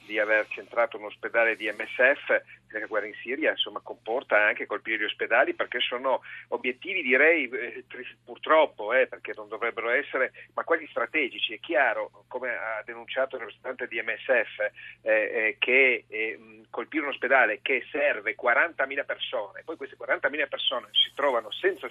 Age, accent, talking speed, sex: 40-59, native, 160 wpm, male